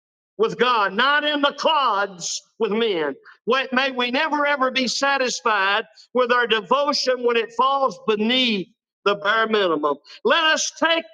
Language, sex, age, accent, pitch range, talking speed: English, male, 50-69, American, 180-270 Hz, 150 wpm